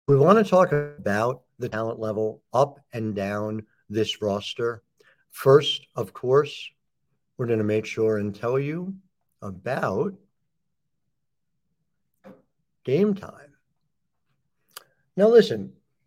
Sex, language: male, English